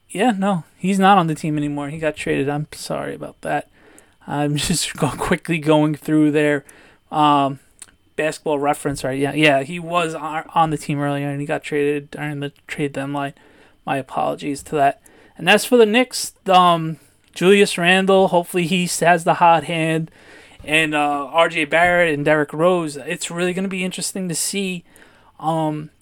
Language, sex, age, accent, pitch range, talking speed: English, male, 20-39, American, 150-180 Hz, 175 wpm